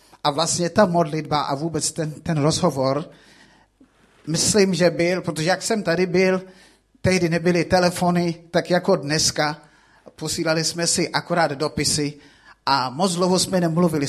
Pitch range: 150-180 Hz